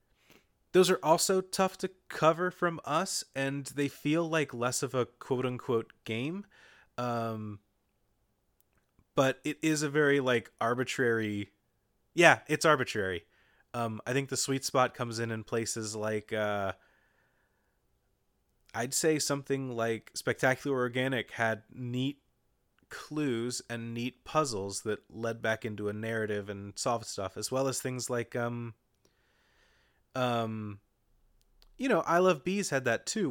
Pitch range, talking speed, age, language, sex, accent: 115-150 Hz, 135 wpm, 30-49, English, male, American